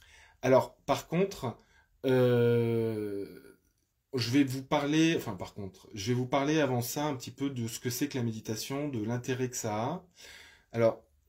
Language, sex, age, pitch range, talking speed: French, male, 20-39, 110-135 Hz, 175 wpm